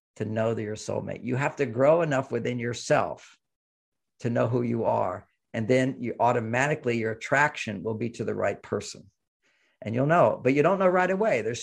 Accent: American